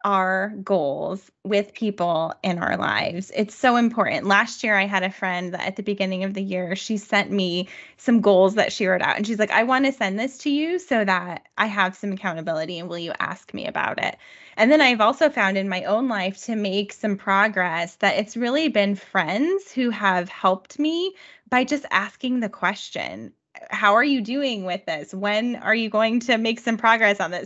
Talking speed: 215 wpm